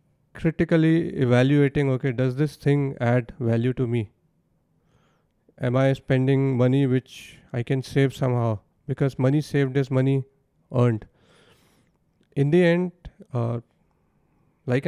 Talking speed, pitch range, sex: 120 wpm, 130-155 Hz, male